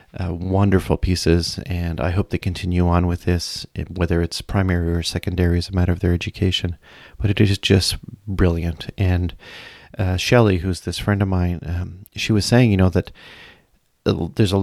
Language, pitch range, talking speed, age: English, 85-105 Hz, 175 wpm, 40-59